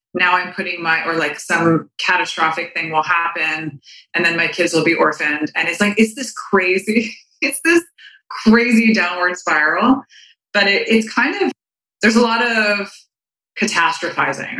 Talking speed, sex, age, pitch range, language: 160 wpm, female, 20-39, 170-225 Hz, English